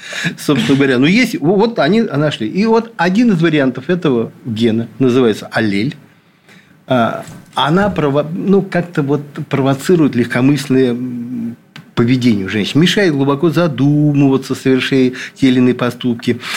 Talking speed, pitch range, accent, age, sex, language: 125 wpm, 130-190 Hz, native, 50-69, male, Russian